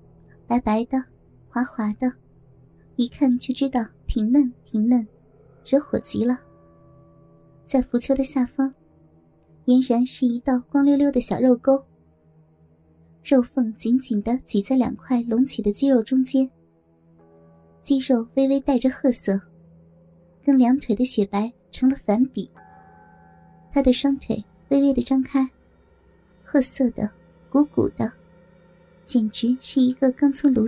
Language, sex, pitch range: Chinese, male, 180-265 Hz